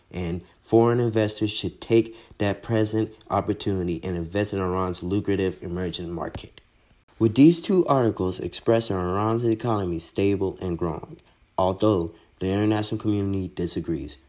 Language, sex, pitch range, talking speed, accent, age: English, male, 90-115 Hz, 125 wpm, American, 30-49